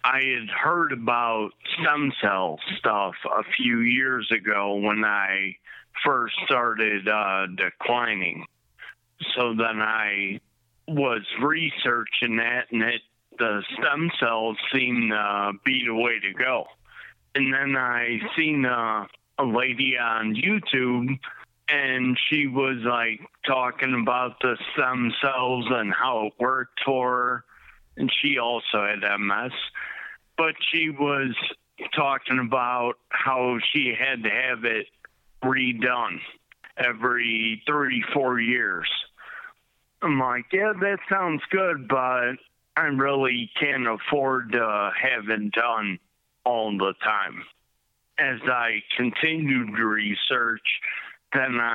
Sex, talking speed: male, 120 wpm